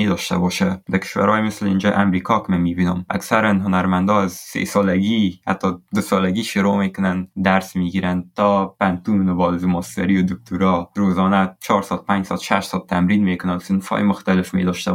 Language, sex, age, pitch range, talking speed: Persian, male, 20-39, 90-100 Hz, 135 wpm